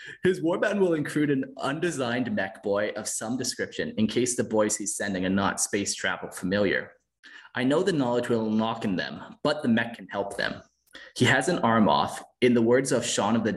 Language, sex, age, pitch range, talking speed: English, male, 20-39, 110-145 Hz, 210 wpm